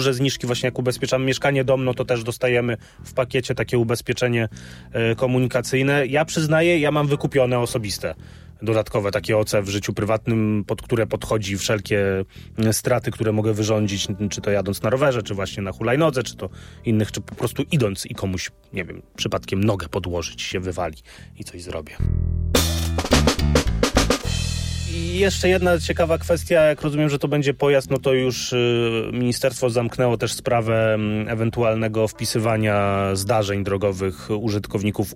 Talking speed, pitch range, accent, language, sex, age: 145 wpm, 100-125 Hz, native, Polish, male, 30-49